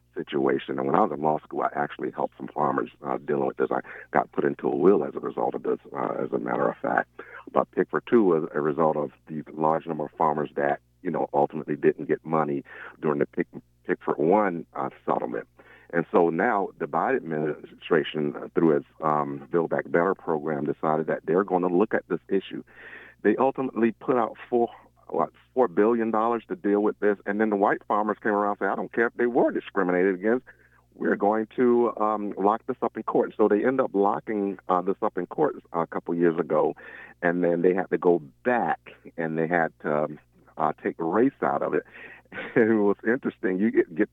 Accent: American